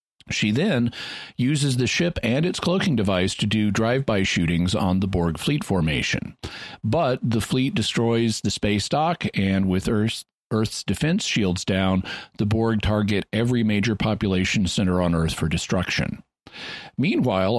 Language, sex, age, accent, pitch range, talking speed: English, male, 40-59, American, 95-115 Hz, 150 wpm